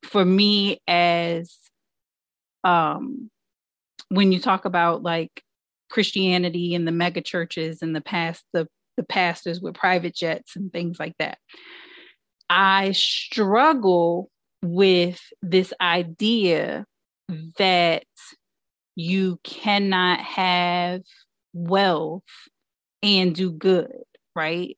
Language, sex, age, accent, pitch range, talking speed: English, female, 30-49, American, 165-195 Hz, 100 wpm